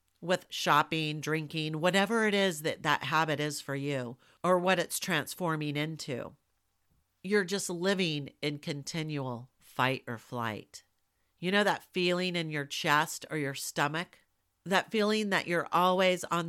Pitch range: 140-175 Hz